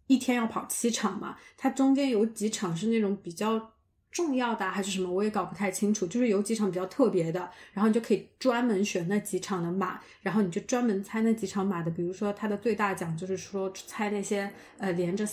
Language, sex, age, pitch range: Chinese, female, 20-39, 185-225 Hz